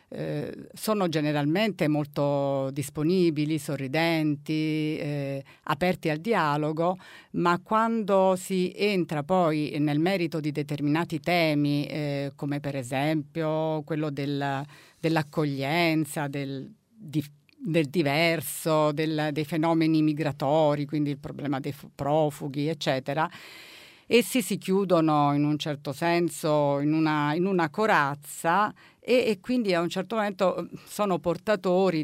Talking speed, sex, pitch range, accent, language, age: 110 wpm, female, 150-180 Hz, native, Italian, 50-69